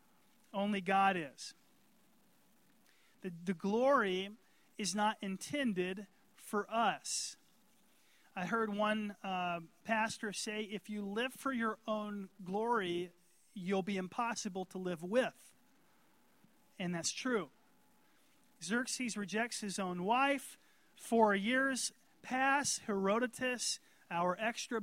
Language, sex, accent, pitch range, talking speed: English, male, American, 205-255 Hz, 105 wpm